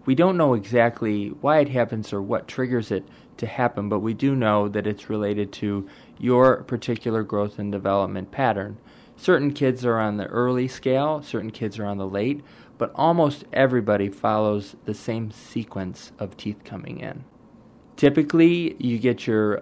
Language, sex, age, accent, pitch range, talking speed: English, male, 20-39, American, 105-130 Hz, 170 wpm